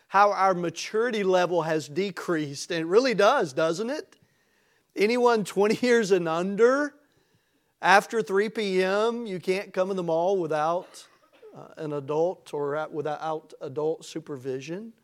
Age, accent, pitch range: 40-59, American, 155-205 Hz